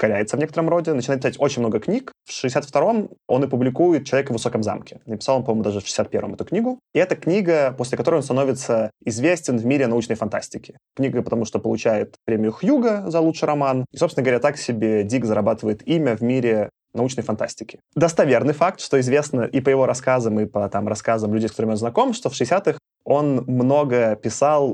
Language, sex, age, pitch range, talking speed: Russian, male, 20-39, 115-140 Hz, 195 wpm